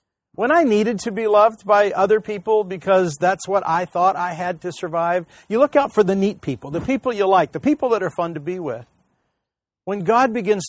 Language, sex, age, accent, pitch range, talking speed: English, male, 50-69, American, 165-215 Hz, 225 wpm